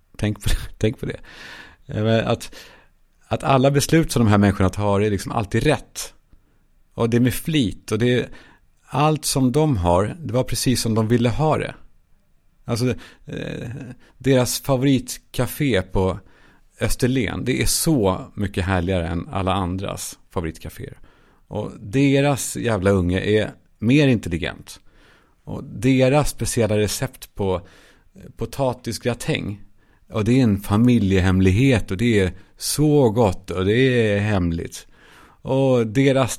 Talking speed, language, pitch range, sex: 135 wpm, Swedish, 95-130 Hz, male